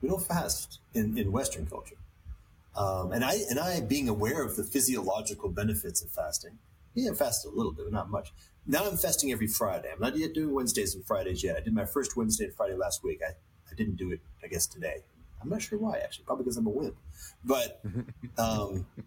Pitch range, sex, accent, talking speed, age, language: 90-120 Hz, male, American, 225 wpm, 30-49, English